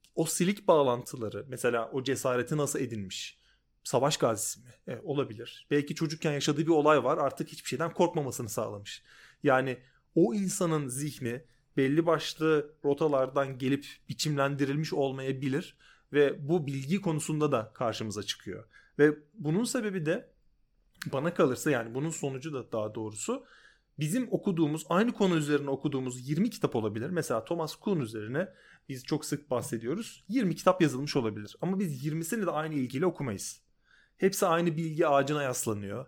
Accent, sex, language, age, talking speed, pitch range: native, male, Turkish, 30-49, 145 wpm, 130-170 Hz